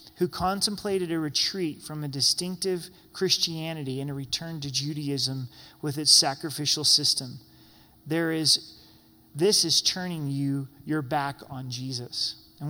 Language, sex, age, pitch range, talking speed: English, male, 30-49, 140-170 Hz, 130 wpm